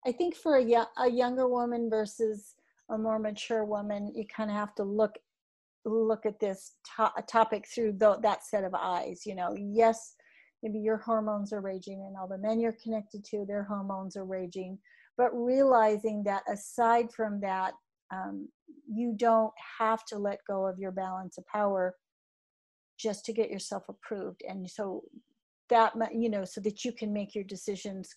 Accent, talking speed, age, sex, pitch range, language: American, 175 wpm, 50-69, female, 200-230 Hz, English